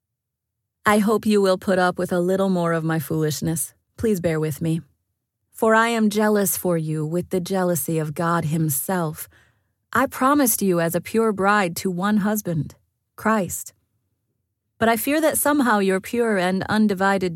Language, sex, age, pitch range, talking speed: English, female, 30-49, 155-210 Hz, 170 wpm